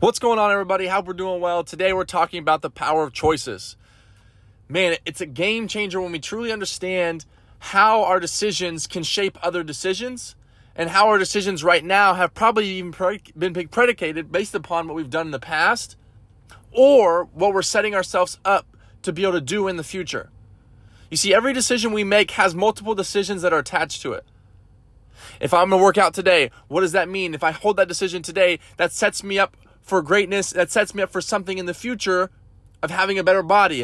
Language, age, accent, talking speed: English, 20-39, American, 205 wpm